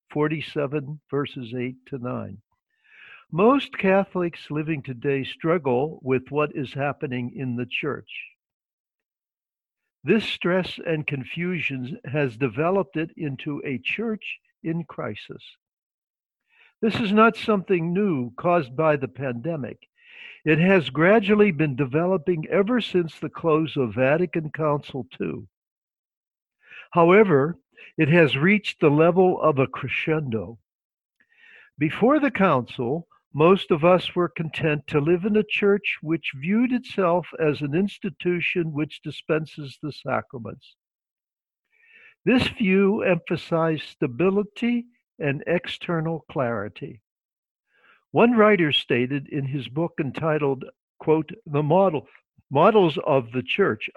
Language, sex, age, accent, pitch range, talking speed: English, male, 60-79, American, 145-190 Hz, 115 wpm